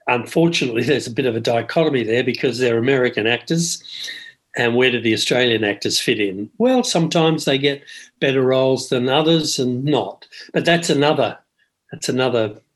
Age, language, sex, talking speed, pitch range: 50-69, English, male, 165 wpm, 125-165 Hz